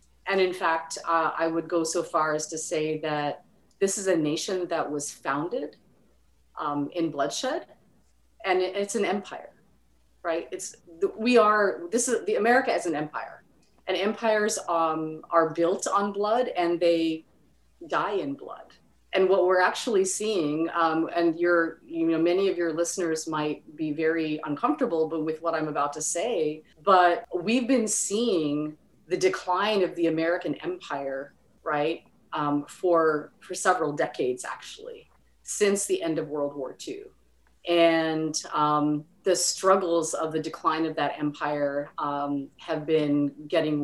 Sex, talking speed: female, 155 wpm